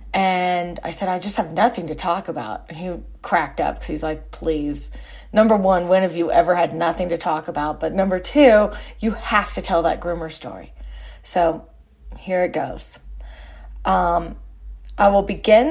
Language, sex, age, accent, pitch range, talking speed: English, female, 30-49, American, 165-200 Hz, 180 wpm